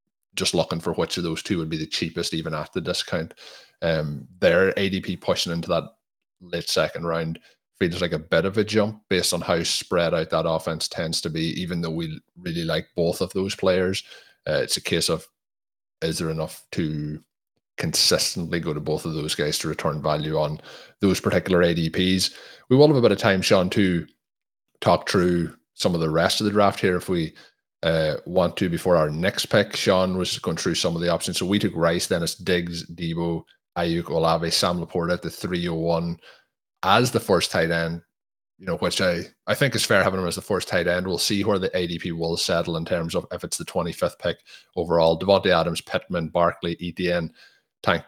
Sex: male